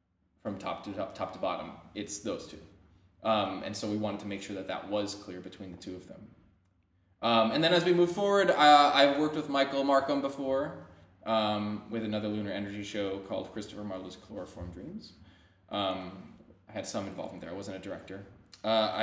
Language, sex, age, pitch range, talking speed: English, male, 20-39, 95-140 Hz, 190 wpm